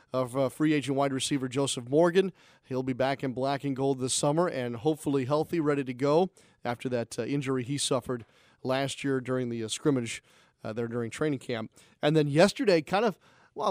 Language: English